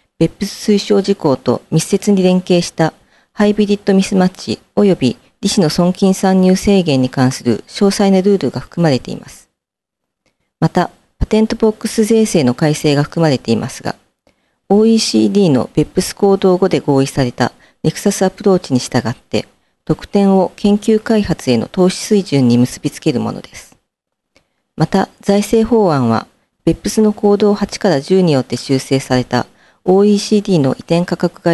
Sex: female